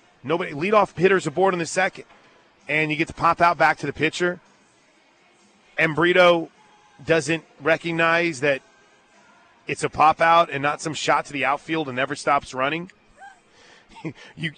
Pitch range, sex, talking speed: 150-190 Hz, male, 155 wpm